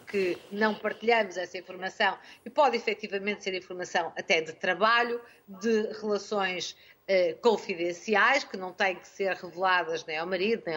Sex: female